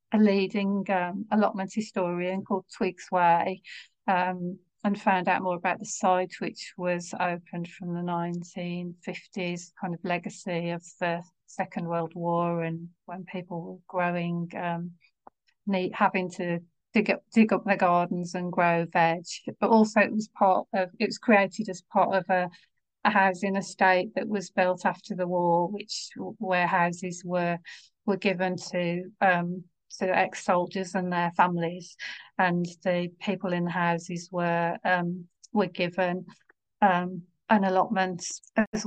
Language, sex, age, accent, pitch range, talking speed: English, female, 40-59, British, 175-200 Hz, 150 wpm